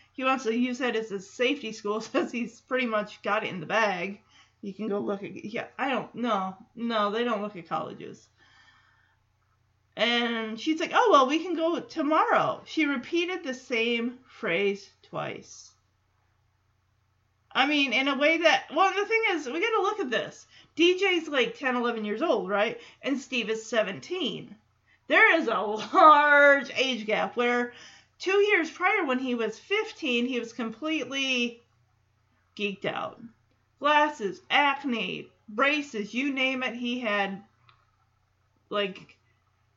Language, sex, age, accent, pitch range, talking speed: English, female, 30-49, American, 195-295 Hz, 155 wpm